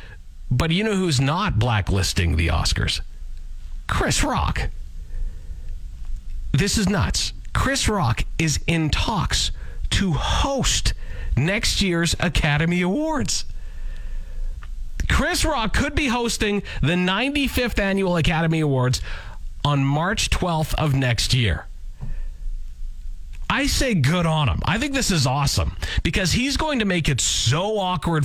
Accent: American